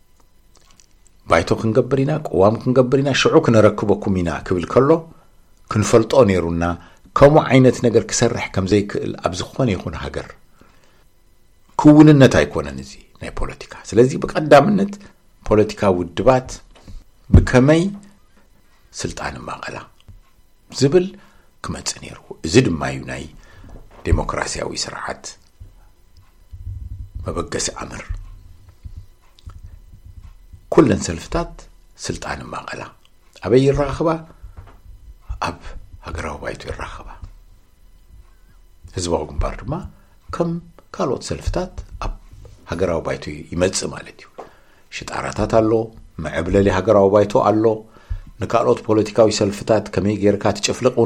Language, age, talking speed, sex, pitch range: English, 60-79, 80 wpm, male, 85-110 Hz